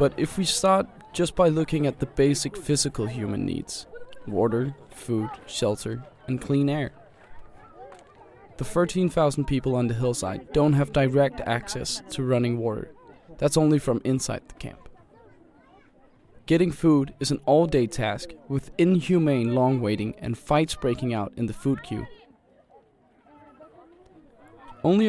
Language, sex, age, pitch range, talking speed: Danish, male, 20-39, 125-155 Hz, 135 wpm